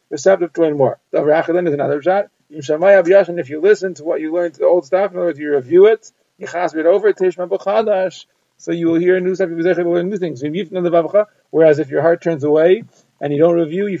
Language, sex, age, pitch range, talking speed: English, male, 40-59, 160-190 Hz, 210 wpm